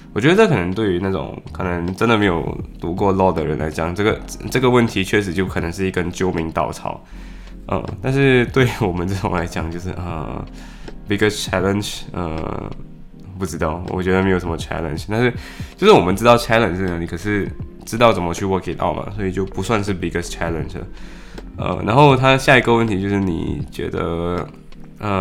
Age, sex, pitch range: 20-39, male, 85-110 Hz